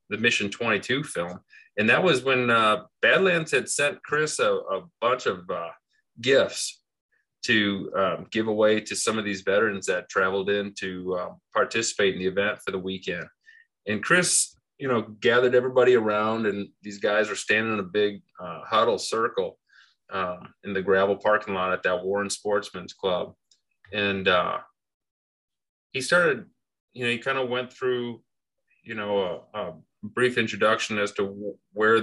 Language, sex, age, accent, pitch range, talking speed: English, male, 30-49, American, 100-145 Hz, 170 wpm